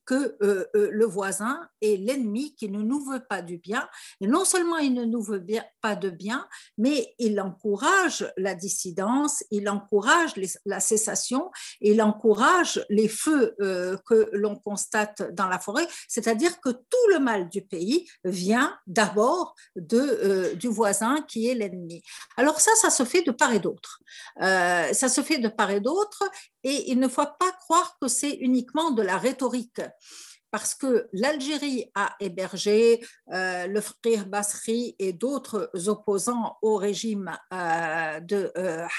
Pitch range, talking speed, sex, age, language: 200-270 Hz, 165 wpm, female, 50-69, French